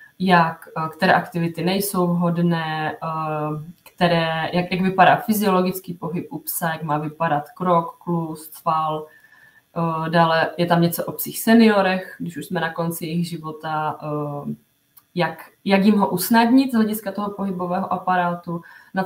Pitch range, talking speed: 165-195 Hz, 135 wpm